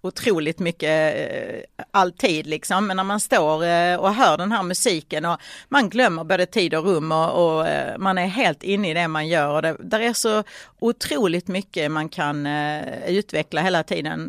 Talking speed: 170 wpm